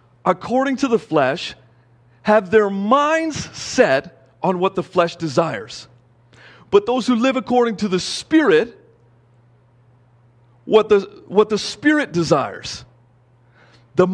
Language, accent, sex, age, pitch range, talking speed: English, American, male, 40-59, 120-205 Hz, 120 wpm